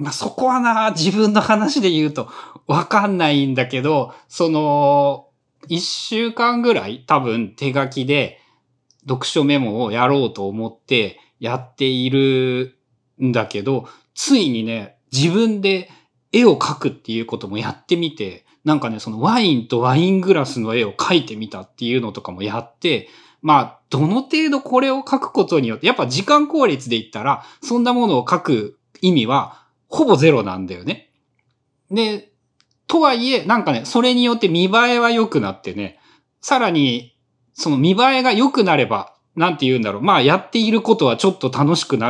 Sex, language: male, Japanese